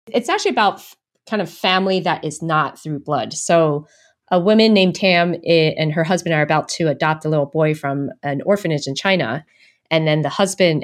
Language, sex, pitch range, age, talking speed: English, female, 150-185 Hz, 30-49, 195 wpm